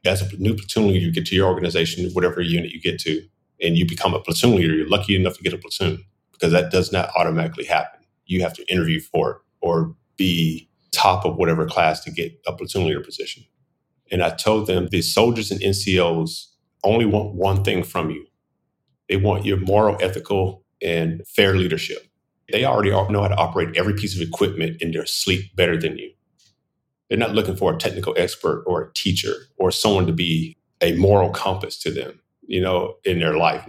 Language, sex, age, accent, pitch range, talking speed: English, male, 30-49, American, 90-105 Hz, 205 wpm